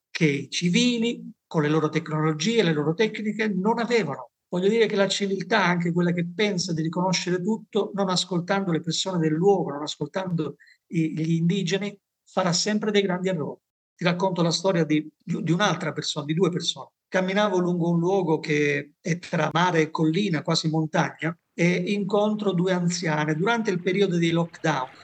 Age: 50-69